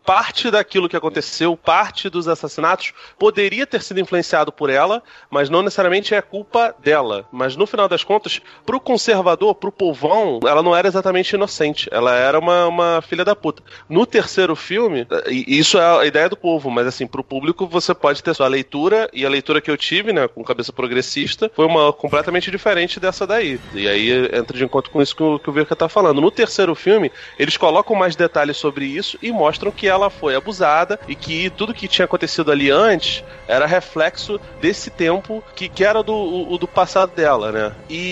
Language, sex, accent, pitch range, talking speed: Portuguese, male, Brazilian, 140-195 Hz, 200 wpm